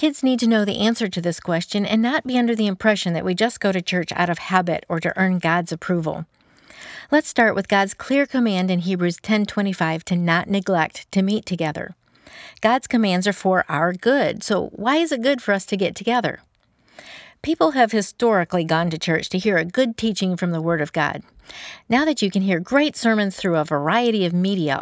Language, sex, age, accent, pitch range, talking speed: English, female, 50-69, American, 175-235 Hz, 215 wpm